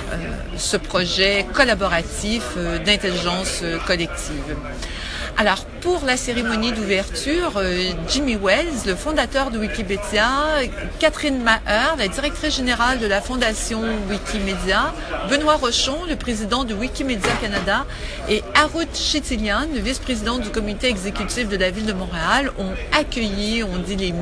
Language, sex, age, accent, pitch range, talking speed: English, female, 50-69, French, 205-275 Hz, 135 wpm